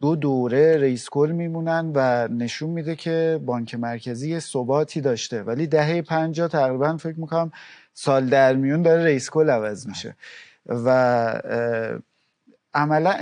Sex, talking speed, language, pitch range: male, 125 wpm, Persian, 130-165 Hz